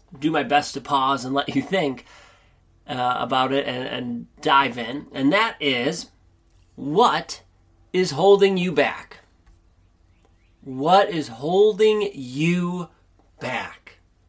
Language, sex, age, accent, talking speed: English, male, 30-49, American, 120 wpm